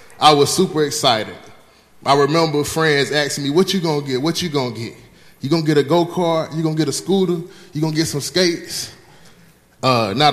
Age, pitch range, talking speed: 20-39, 140-175 Hz, 225 wpm